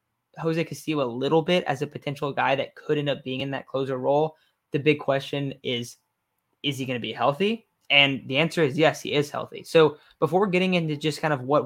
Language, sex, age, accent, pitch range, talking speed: English, male, 20-39, American, 135-155 Hz, 225 wpm